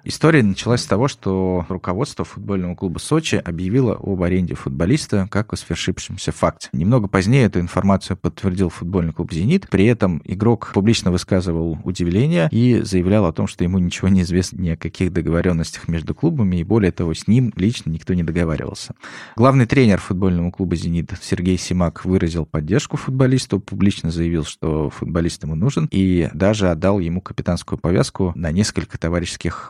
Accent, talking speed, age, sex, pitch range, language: native, 160 wpm, 20-39, male, 85-105 Hz, Russian